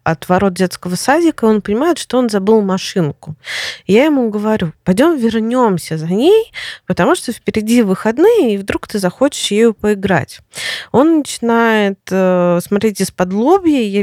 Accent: native